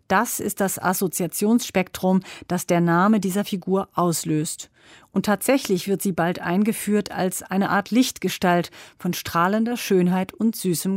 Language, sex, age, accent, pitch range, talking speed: German, female, 40-59, German, 180-215 Hz, 135 wpm